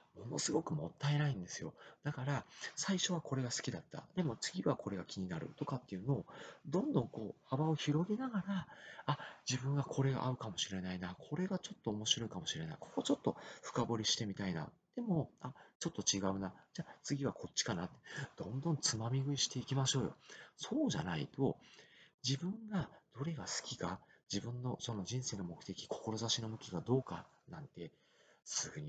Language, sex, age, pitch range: Japanese, male, 40-59, 110-145 Hz